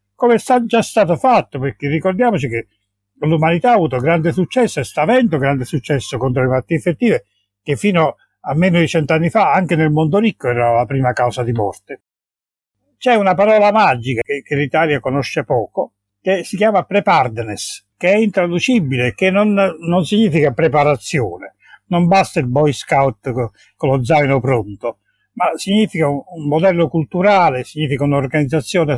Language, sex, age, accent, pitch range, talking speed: Italian, male, 60-79, native, 135-195 Hz, 160 wpm